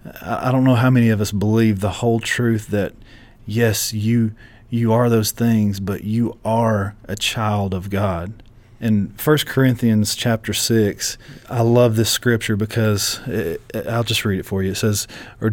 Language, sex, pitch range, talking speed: English, male, 105-120 Hz, 175 wpm